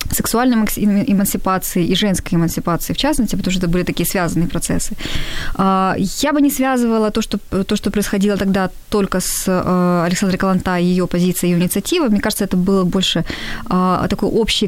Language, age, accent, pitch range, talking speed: Ukrainian, 20-39, native, 180-220 Hz, 165 wpm